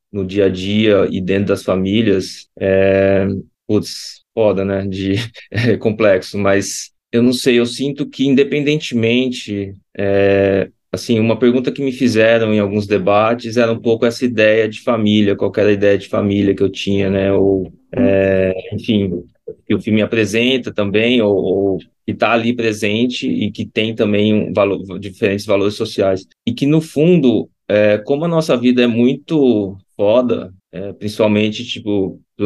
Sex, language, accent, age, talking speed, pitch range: male, Portuguese, Brazilian, 20-39, 160 wpm, 100-120 Hz